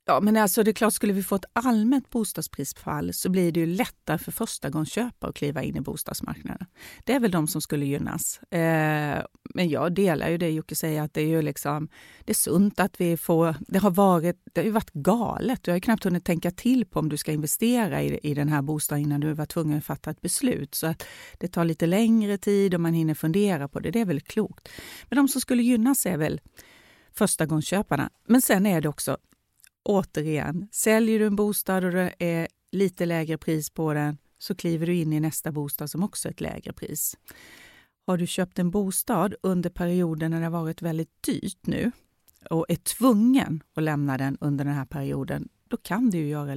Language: Swedish